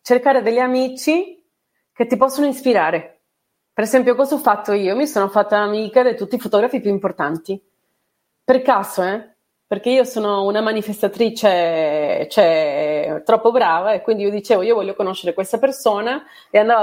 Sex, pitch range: female, 200-255 Hz